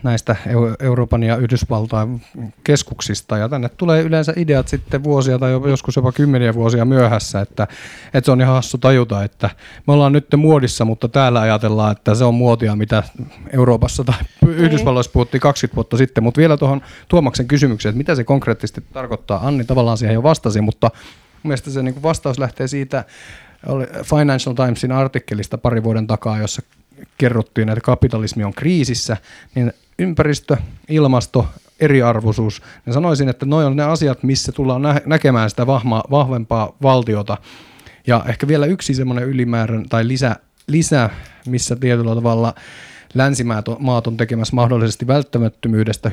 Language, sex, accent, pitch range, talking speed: Finnish, male, native, 115-135 Hz, 150 wpm